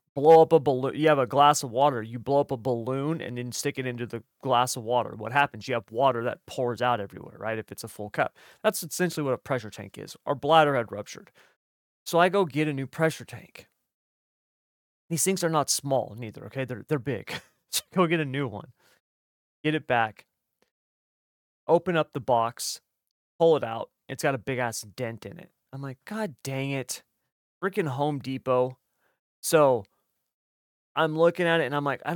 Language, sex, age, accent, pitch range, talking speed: English, male, 30-49, American, 120-155 Hz, 205 wpm